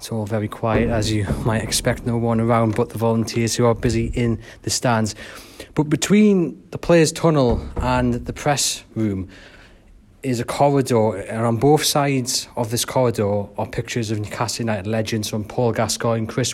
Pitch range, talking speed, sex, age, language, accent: 110-130 Hz, 180 wpm, male, 30-49, English, British